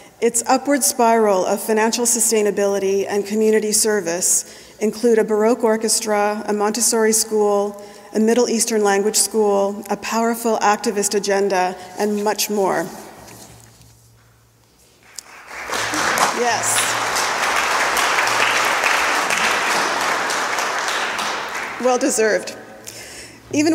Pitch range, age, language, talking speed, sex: 200-235 Hz, 40-59, English, 80 wpm, female